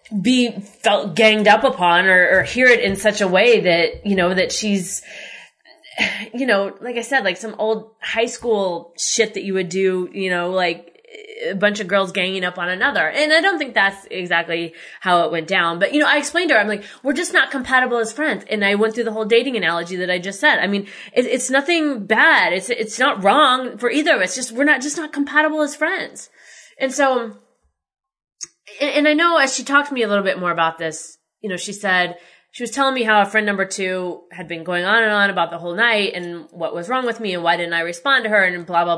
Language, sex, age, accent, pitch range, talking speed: English, female, 20-39, American, 185-260 Hz, 245 wpm